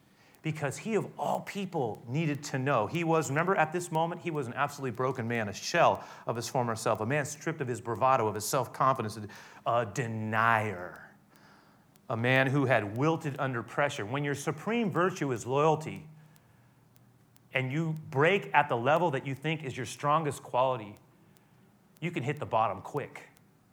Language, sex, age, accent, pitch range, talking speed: English, male, 30-49, American, 115-150 Hz, 175 wpm